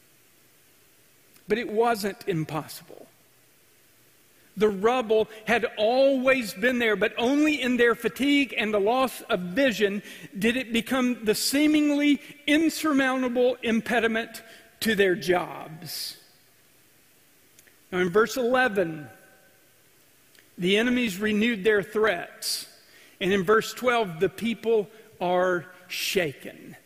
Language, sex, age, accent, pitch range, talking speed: English, male, 50-69, American, 200-260 Hz, 105 wpm